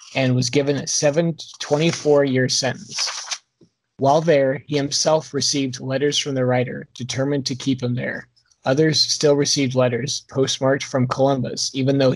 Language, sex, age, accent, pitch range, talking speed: English, male, 30-49, American, 125-140 Hz, 145 wpm